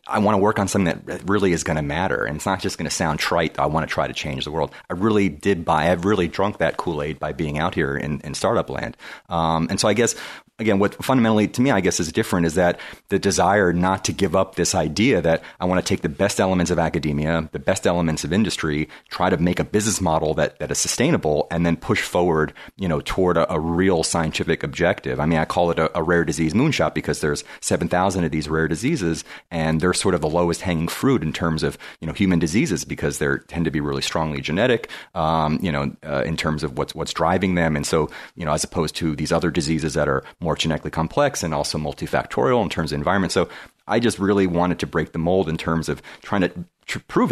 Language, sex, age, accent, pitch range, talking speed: English, male, 30-49, American, 80-90 Hz, 245 wpm